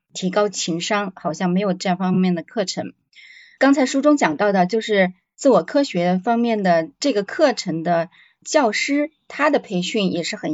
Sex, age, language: female, 20-39, Chinese